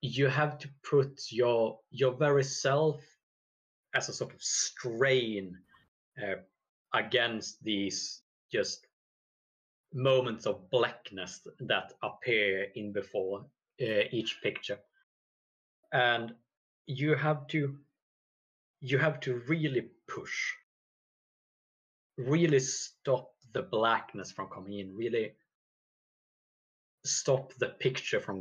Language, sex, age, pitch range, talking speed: English, male, 30-49, 105-145 Hz, 100 wpm